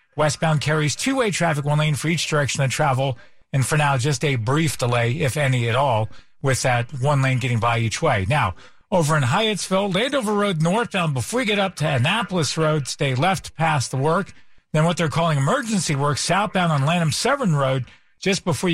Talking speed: 200 wpm